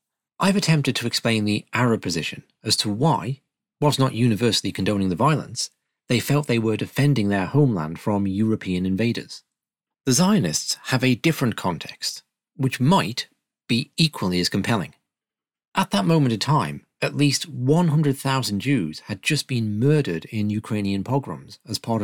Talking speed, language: 150 wpm, English